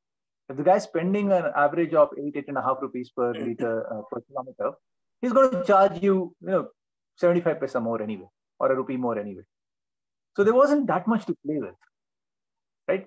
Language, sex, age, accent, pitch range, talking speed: Kannada, male, 30-49, native, 130-195 Hz, 195 wpm